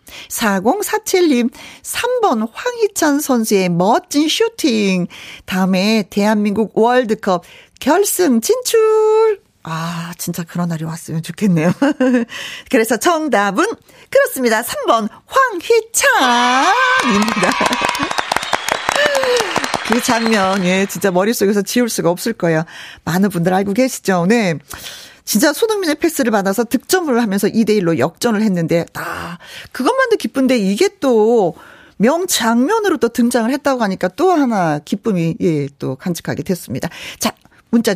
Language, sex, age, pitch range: Korean, female, 40-59, 185-310 Hz